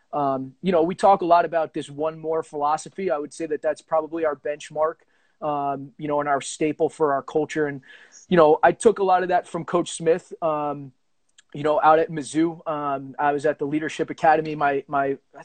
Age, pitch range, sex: 20-39, 150-165 Hz, male